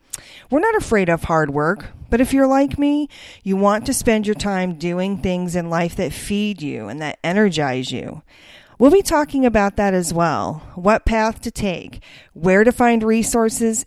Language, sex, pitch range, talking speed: English, female, 170-220 Hz, 185 wpm